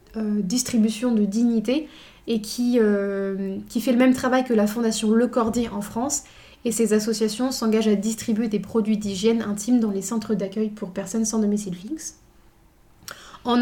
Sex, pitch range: female, 210-245 Hz